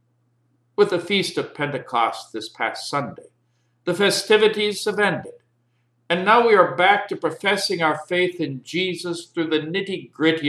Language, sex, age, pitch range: English, male, 60-79, 125-185 Hz